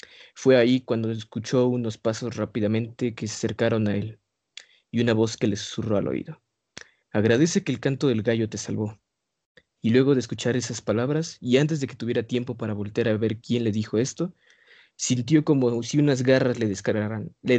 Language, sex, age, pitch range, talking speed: Spanish, male, 20-39, 110-135 Hz, 190 wpm